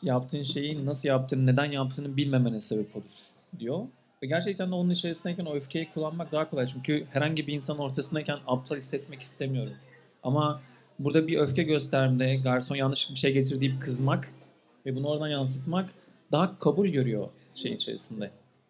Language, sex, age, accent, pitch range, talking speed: Turkish, male, 40-59, native, 130-155 Hz, 155 wpm